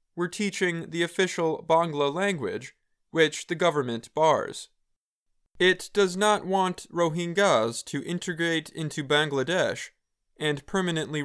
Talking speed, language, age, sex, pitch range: 110 wpm, English, 20-39, male, 140-180 Hz